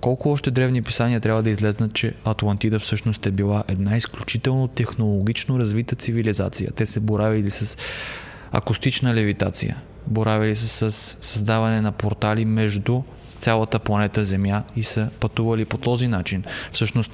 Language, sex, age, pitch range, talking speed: Bulgarian, male, 20-39, 105-115 Hz, 140 wpm